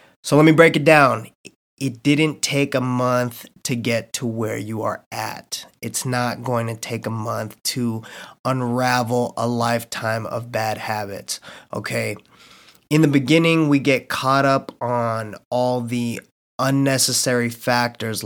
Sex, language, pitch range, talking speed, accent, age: male, English, 120-150 Hz, 150 wpm, American, 20-39